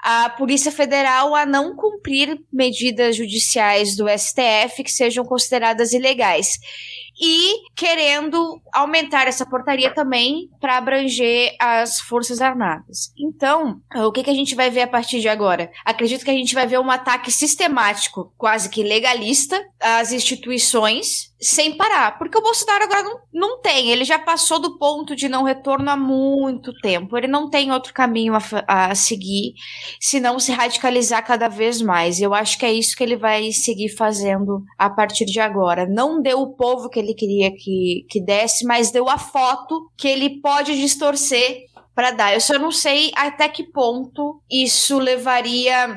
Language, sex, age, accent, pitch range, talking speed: Portuguese, female, 10-29, Brazilian, 215-275 Hz, 170 wpm